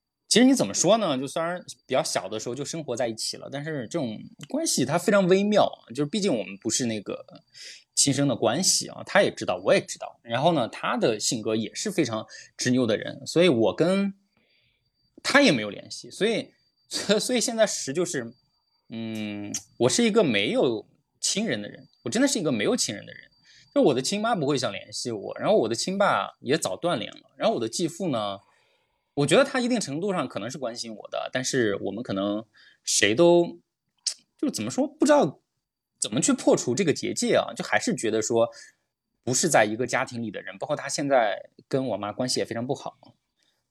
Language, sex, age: Chinese, male, 20-39